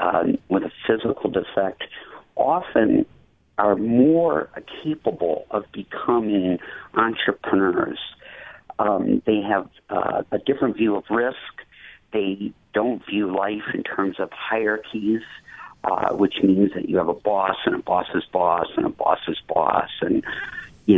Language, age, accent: English, 50-69, American